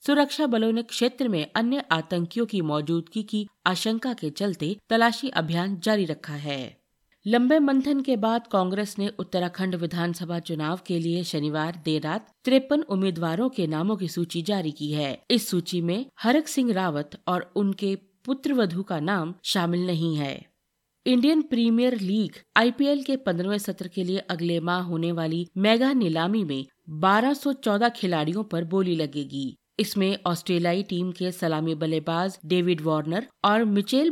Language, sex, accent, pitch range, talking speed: Hindi, female, native, 165-225 Hz, 155 wpm